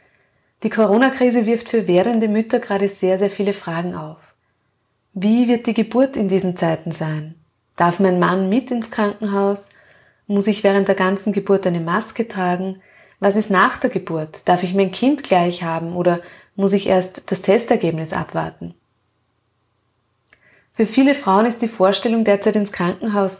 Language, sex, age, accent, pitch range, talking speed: German, female, 20-39, German, 175-215 Hz, 160 wpm